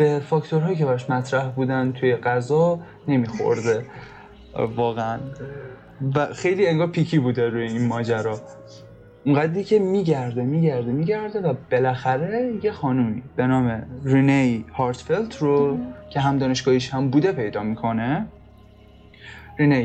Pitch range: 125-160 Hz